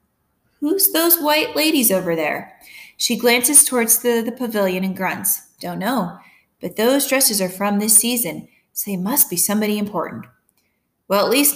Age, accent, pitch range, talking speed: 20-39, American, 190-265 Hz, 165 wpm